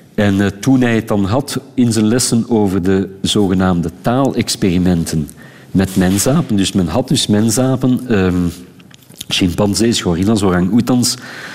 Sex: male